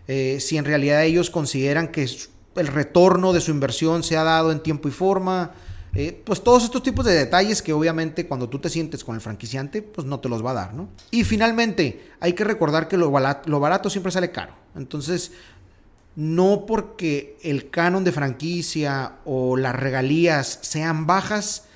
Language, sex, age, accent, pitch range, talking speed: Spanish, male, 40-59, Mexican, 135-175 Hz, 185 wpm